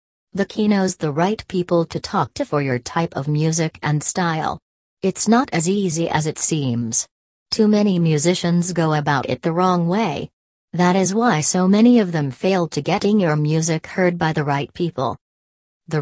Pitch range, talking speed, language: 150-180 Hz, 185 wpm, English